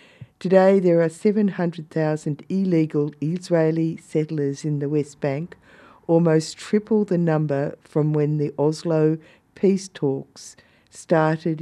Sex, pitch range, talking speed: female, 145-170 Hz, 115 wpm